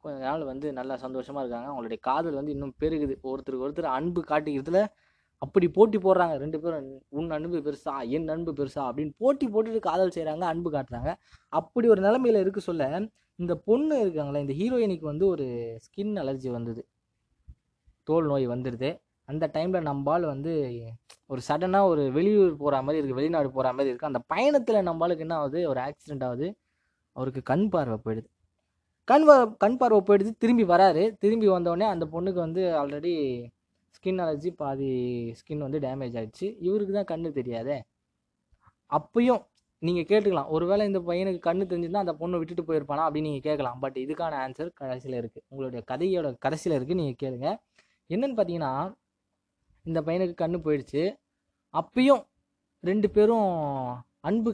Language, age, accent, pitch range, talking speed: Tamil, 20-39, native, 135-185 Hz, 150 wpm